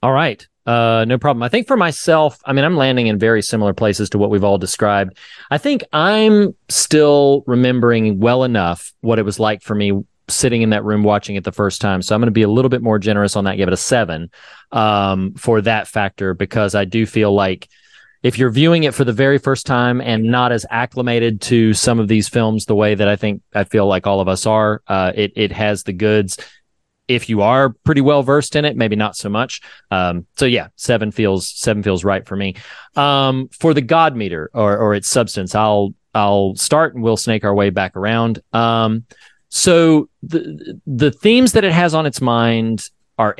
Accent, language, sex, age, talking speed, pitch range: American, English, male, 30-49, 220 wpm, 105-140 Hz